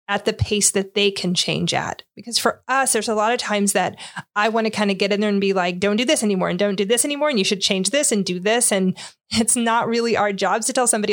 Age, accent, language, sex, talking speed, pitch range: 30-49, American, English, female, 290 wpm, 185-215 Hz